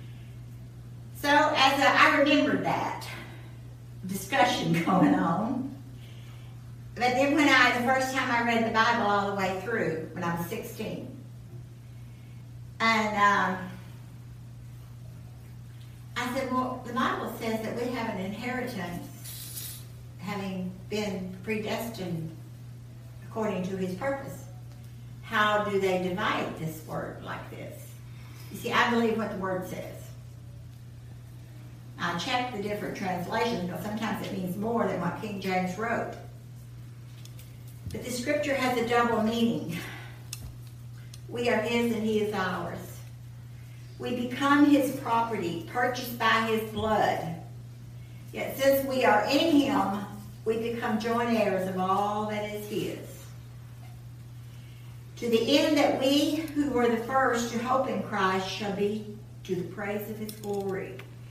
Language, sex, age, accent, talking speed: English, female, 60-79, American, 135 wpm